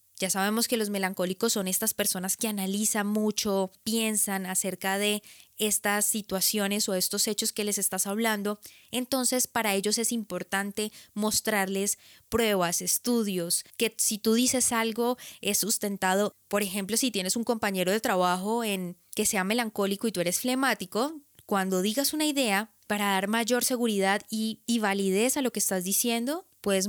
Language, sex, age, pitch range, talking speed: Spanish, female, 10-29, 190-225 Hz, 160 wpm